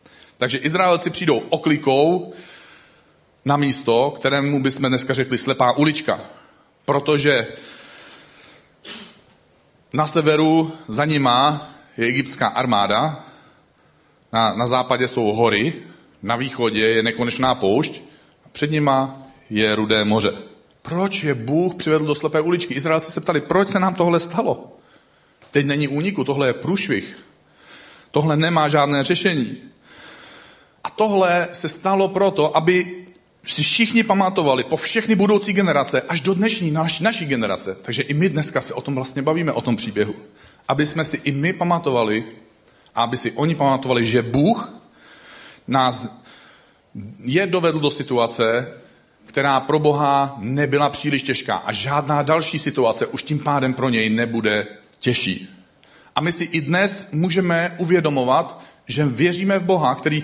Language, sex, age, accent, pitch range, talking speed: Czech, male, 40-59, native, 130-170 Hz, 140 wpm